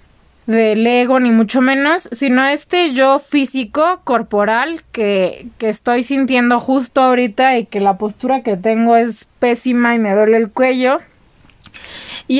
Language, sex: Spanish, female